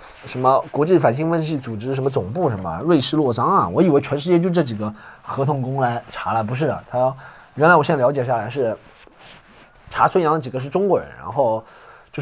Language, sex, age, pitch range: Chinese, male, 20-39, 125-195 Hz